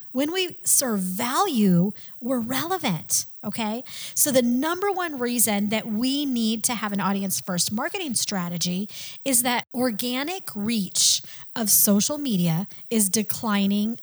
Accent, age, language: American, 30-49, English